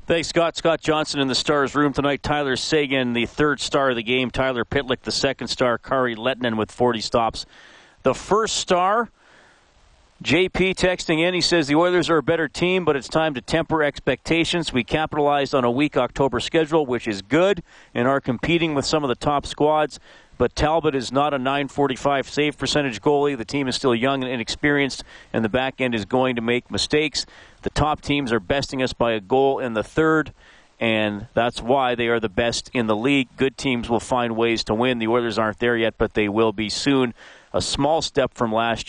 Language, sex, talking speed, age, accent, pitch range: English, male, 210 wpm, 40-59, American, 110-145 Hz